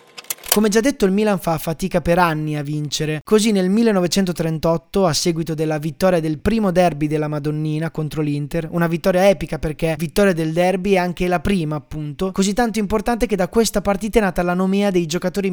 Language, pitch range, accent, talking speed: Italian, 160-195 Hz, native, 195 wpm